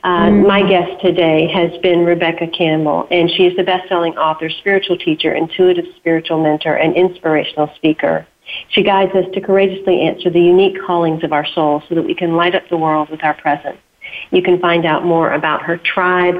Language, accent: English, American